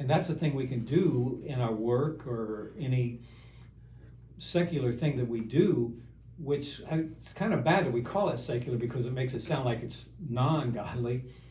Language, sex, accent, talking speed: English, male, American, 190 wpm